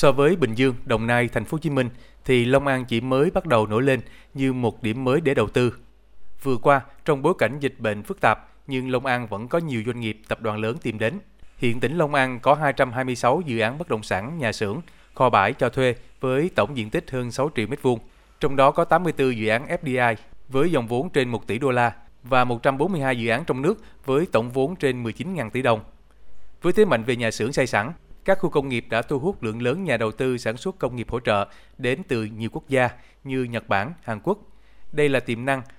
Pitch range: 110-135 Hz